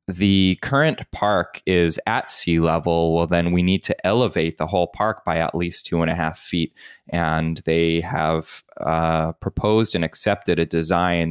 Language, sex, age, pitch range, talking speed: English, male, 20-39, 80-95 Hz, 175 wpm